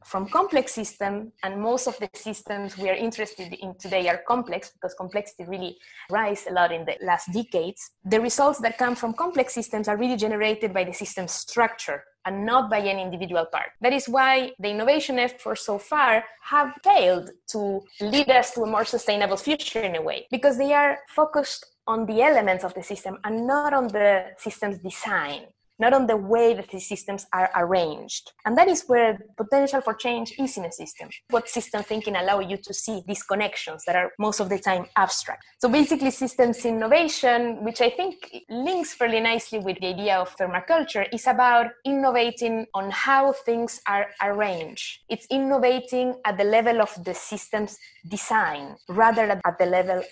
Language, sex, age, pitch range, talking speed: English, female, 20-39, 195-250 Hz, 185 wpm